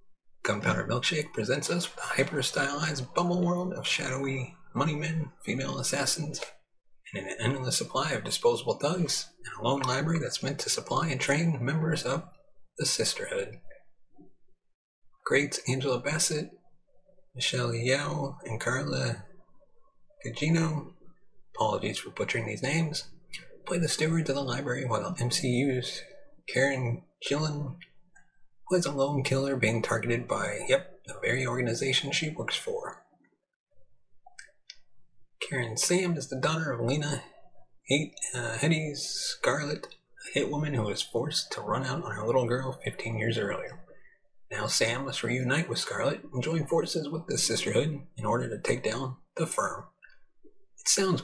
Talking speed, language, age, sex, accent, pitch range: 140 wpm, English, 30-49, male, American, 130-175 Hz